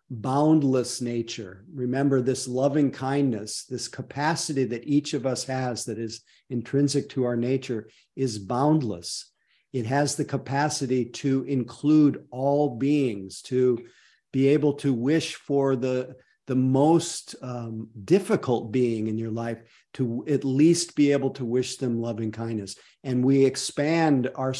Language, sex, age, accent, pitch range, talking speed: English, male, 50-69, American, 120-140 Hz, 140 wpm